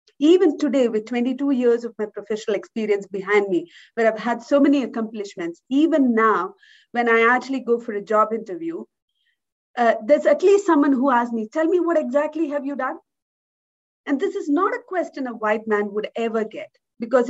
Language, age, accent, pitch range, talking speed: English, 50-69, Indian, 220-315 Hz, 190 wpm